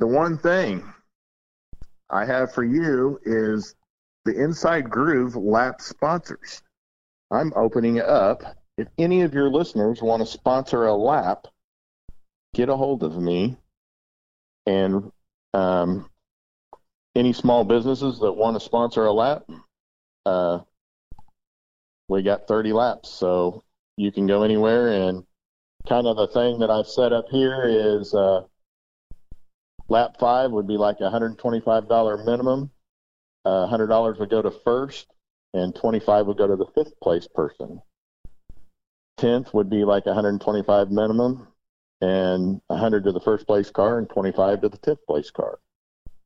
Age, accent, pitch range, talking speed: 50-69, American, 95-120 Hz, 140 wpm